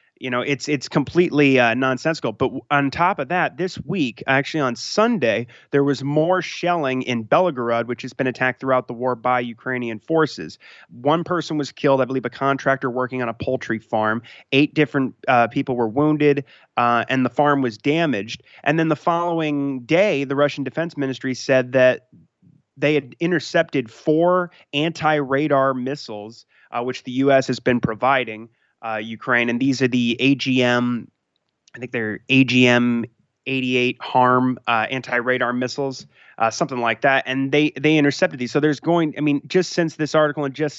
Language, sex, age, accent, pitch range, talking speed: English, male, 30-49, American, 120-145 Hz, 170 wpm